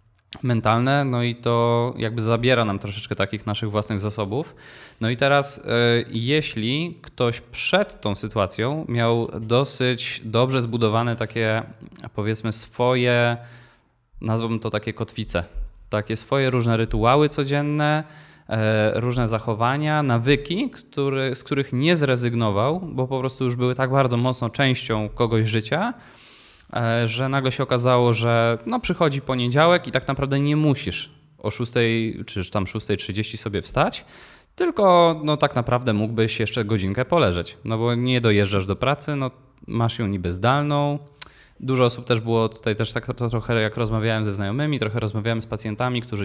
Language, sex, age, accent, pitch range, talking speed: Polish, male, 20-39, native, 110-135 Hz, 145 wpm